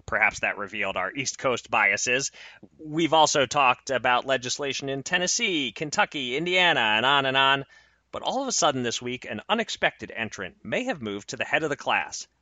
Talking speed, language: 190 wpm, English